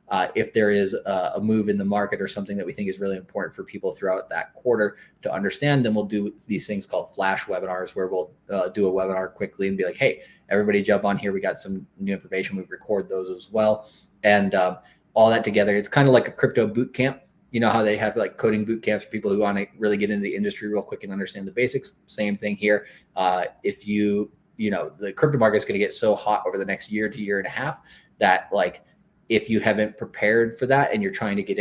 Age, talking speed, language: 30-49, 255 wpm, English